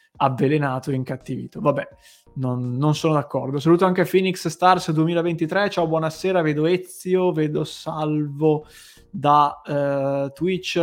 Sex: male